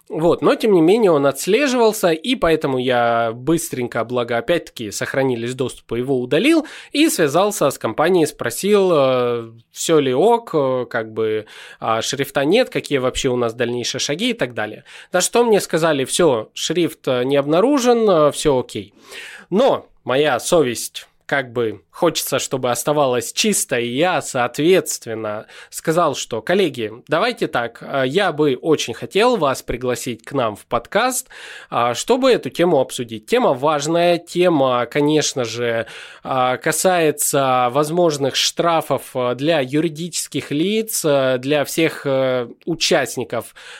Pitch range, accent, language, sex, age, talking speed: 125-170 Hz, native, Russian, male, 20-39, 130 wpm